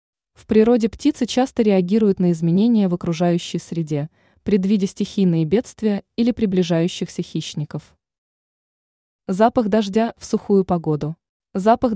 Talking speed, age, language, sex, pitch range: 110 wpm, 20-39, Russian, female, 170-225 Hz